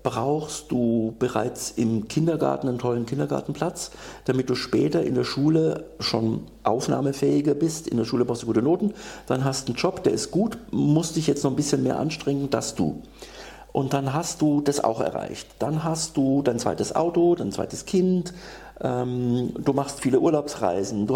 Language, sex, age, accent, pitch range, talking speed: German, male, 50-69, German, 115-150 Hz, 180 wpm